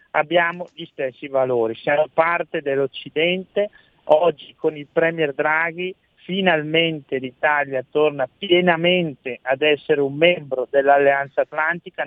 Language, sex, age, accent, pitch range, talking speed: Italian, male, 40-59, native, 140-170 Hz, 110 wpm